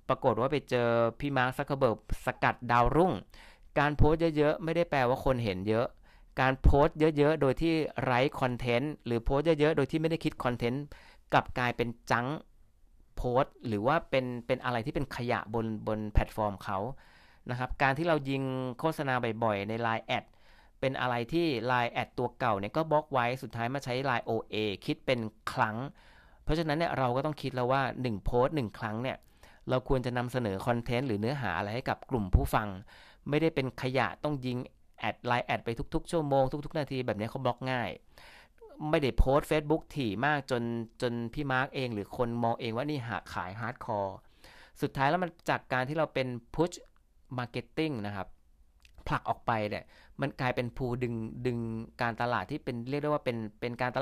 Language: Thai